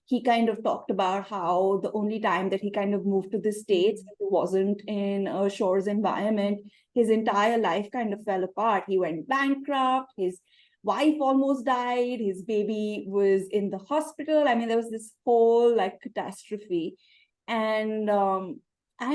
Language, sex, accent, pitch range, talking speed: English, female, Indian, 200-255 Hz, 165 wpm